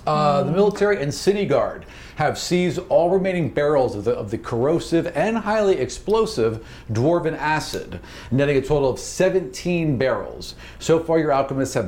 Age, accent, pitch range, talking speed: 50-69, American, 115-165 Hz, 160 wpm